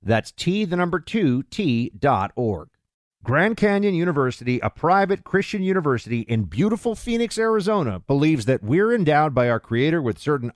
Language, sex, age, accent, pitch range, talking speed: English, male, 50-69, American, 120-185 Hz, 140 wpm